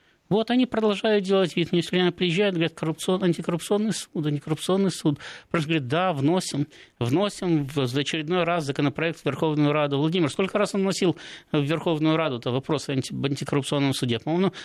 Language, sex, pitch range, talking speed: Russian, male, 130-175 Hz, 165 wpm